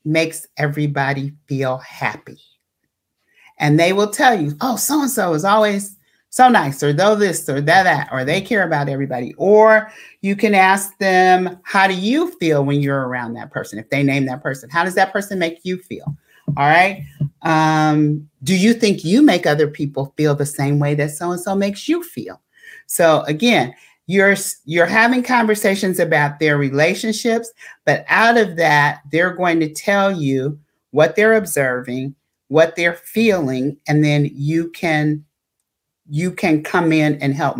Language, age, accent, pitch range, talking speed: English, 40-59, American, 140-185 Hz, 165 wpm